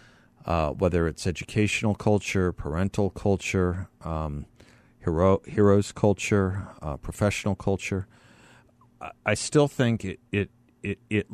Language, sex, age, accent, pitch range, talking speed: English, male, 40-59, American, 90-115 Hz, 115 wpm